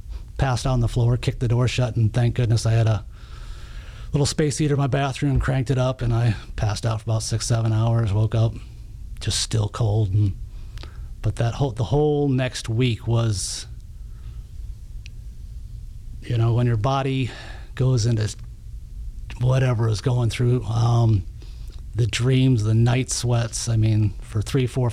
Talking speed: 165 wpm